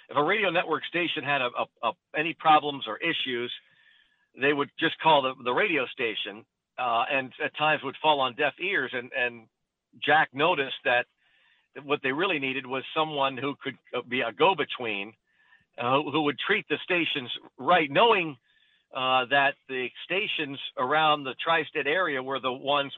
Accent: American